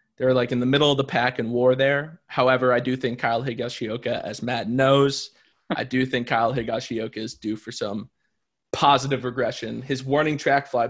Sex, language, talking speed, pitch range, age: male, English, 195 wpm, 120-140 Hz, 20-39